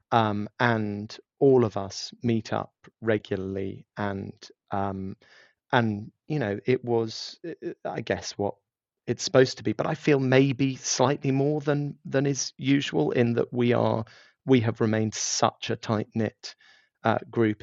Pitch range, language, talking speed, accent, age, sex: 105-120 Hz, English, 155 wpm, British, 30-49, male